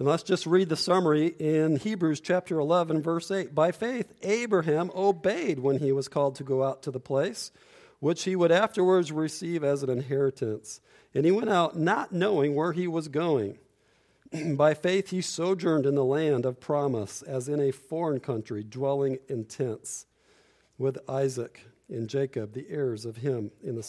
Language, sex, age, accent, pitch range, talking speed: English, male, 50-69, American, 135-180 Hz, 180 wpm